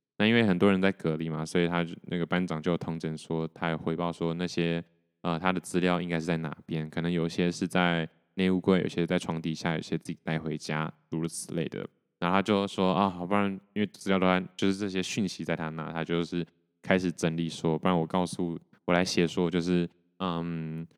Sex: male